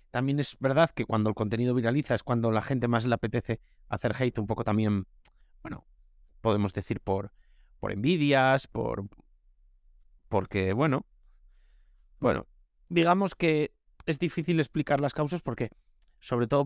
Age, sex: 30-49, male